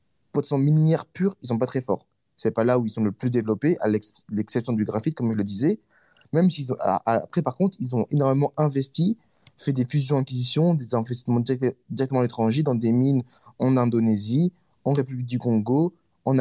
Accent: French